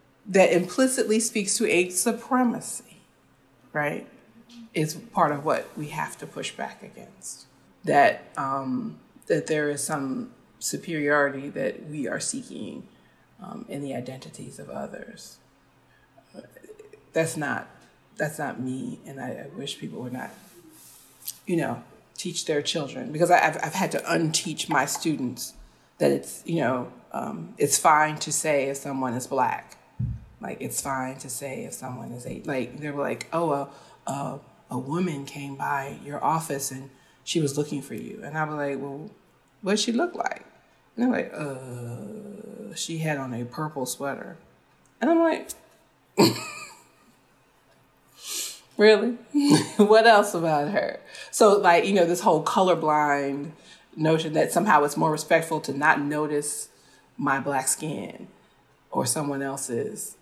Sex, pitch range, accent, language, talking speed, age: female, 140-205 Hz, American, English, 145 wpm, 30-49